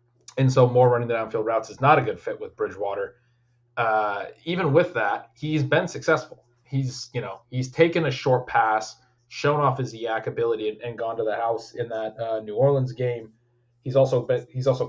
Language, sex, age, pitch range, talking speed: English, male, 20-39, 120-145 Hz, 205 wpm